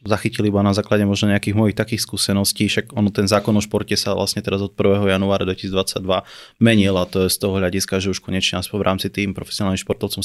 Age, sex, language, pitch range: 20-39, male, Slovak, 95-105 Hz